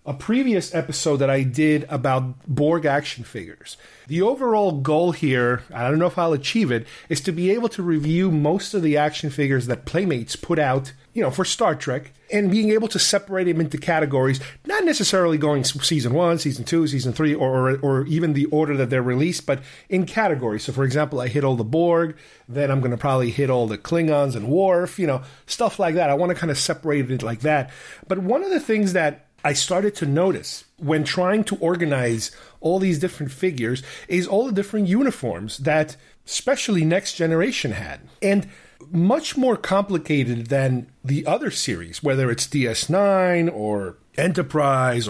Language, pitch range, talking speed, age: English, 135-185 Hz, 190 wpm, 40-59